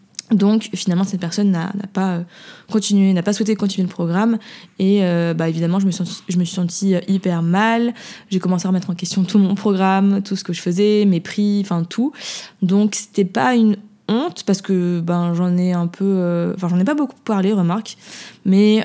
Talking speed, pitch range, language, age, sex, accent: 215 wpm, 180-215 Hz, French, 20-39, female, French